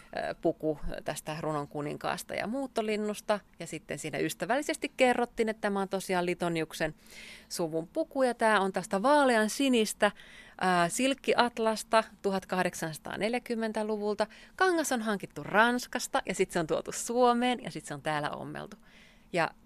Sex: female